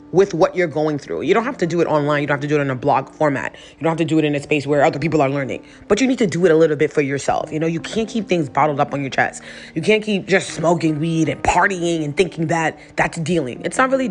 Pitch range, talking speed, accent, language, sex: 145-170 Hz, 315 wpm, American, English, female